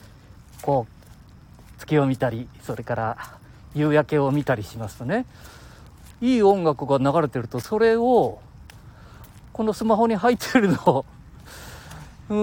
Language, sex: Japanese, male